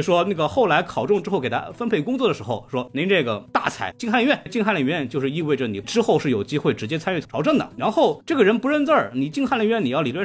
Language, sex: Chinese, male